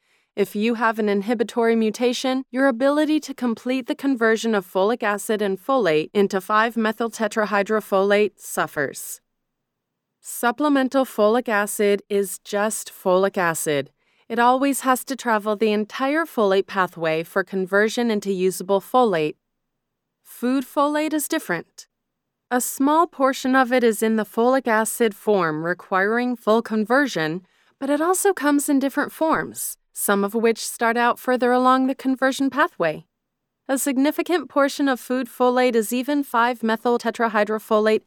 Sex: female